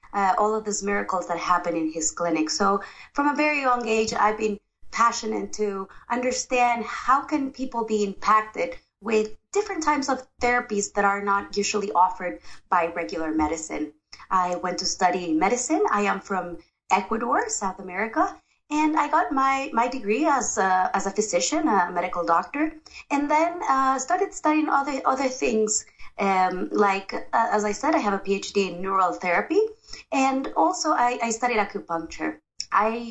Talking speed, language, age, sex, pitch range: 165 wpm, English, 20-39, female, 190-260 Hz